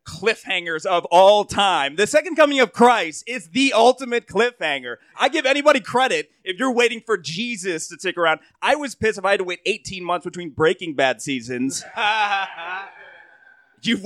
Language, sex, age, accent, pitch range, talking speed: English, male, 30-49, American, 140-225 Hz, 170 wpm